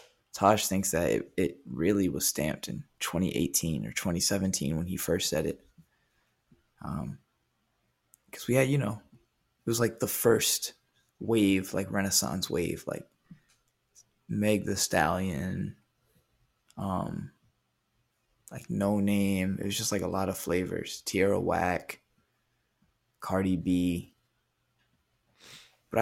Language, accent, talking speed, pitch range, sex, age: English, American, 120 wpm, 95-110 Hz, male, 20-39